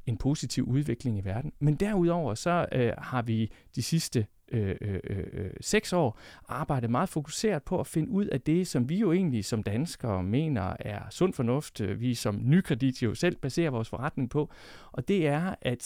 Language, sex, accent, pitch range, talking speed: Danish, male, native, 115-165 Hz, 195 wpm